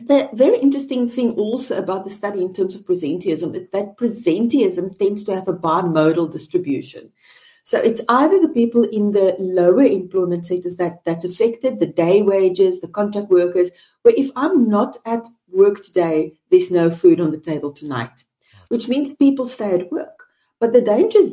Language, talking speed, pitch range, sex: English, 175 wpm, 185-250 Hz, female